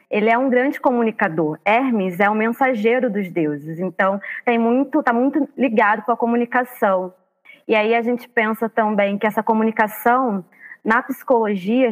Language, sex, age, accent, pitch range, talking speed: Portuguese, female, 20-39, Brazilian, 195-240 Hz, 160 wpm